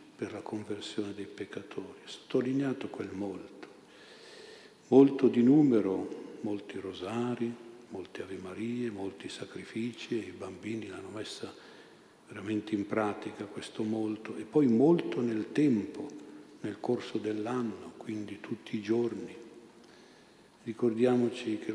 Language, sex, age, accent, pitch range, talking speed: Italian, male, 50-69, native, 105-115 Hz, 115 wpm